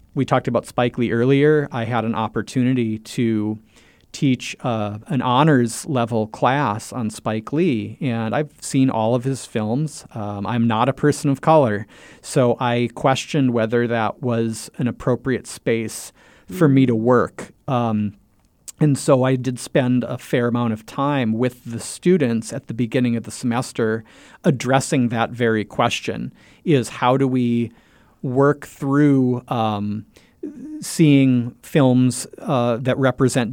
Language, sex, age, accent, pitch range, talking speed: English, male, 40-59, American, 115-135 Hz, 150 wpm